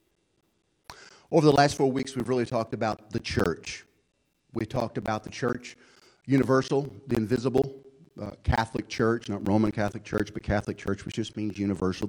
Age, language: 40-59, English